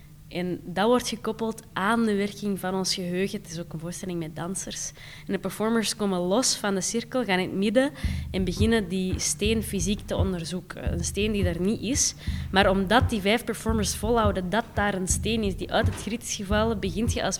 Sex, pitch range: female, 170-205 Hz